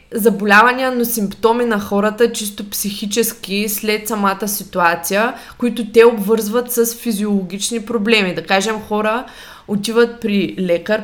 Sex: female